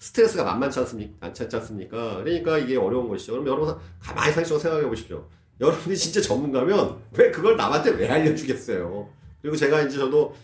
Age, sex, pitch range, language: 40-59, male, 120-175 Hz, Korean